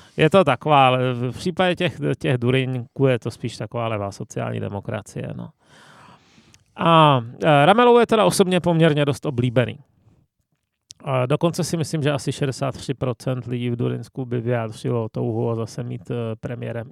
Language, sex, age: Czech, male, 30-49